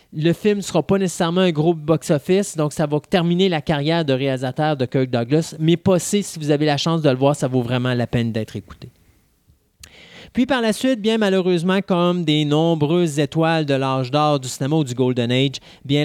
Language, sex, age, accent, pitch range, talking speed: French, male, 30-49, Canadian, 140-175 Hz, 215 wpm